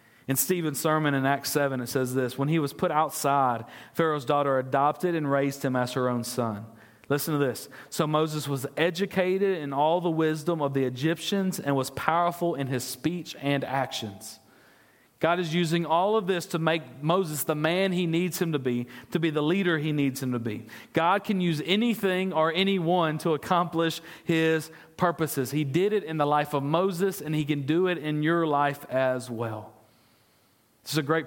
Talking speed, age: 200 wpm, 40-59